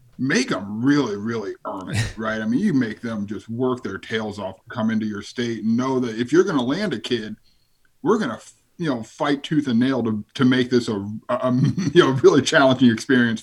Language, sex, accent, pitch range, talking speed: English, male, American, 115-145 Hz, 230 wpm